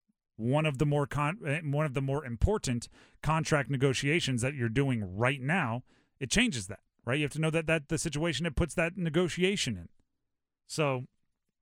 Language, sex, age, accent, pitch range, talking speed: English, male, 30-49, American, 120-160 Hz, 180 wpm